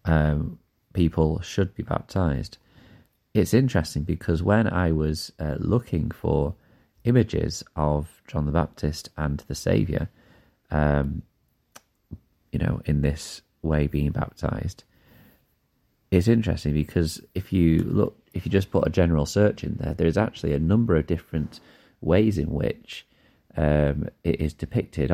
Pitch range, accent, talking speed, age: 75-95 Hz, British, 140 wpm, 30-49